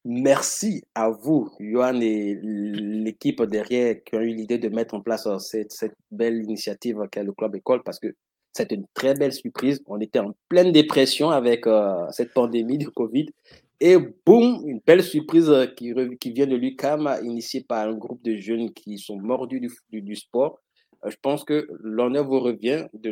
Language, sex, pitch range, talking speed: French, male, 110-130 Hz, 185 wpm